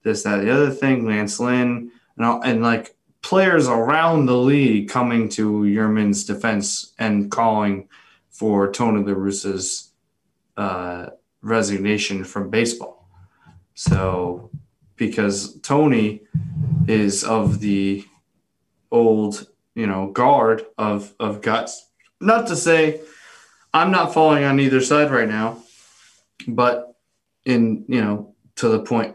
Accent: American